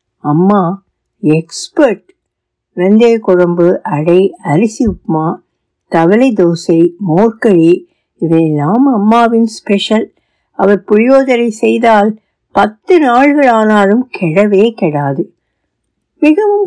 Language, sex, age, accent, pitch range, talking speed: Tamil, female, 60-79, native, 185-250 Hz, 75 wpm